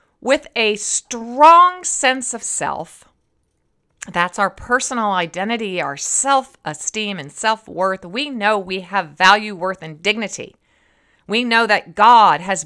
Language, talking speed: English, 130 wpm